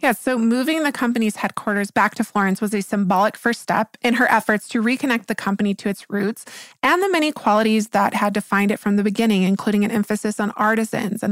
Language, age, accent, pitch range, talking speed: English, 20-39, American, 205-240 Hz, 225 wpm